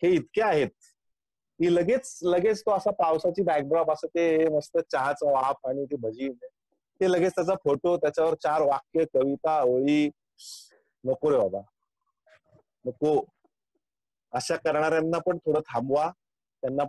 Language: Marathi